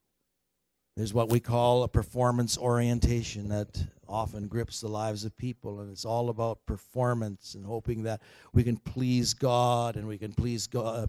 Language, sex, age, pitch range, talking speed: English, male, 50-69, 110-165 Hz, 170 wpm